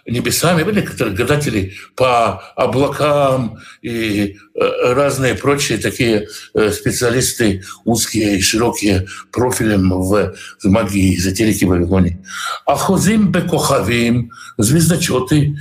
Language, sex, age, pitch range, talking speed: Russian, male, 60-79, 110-155 Hz, 95 wpm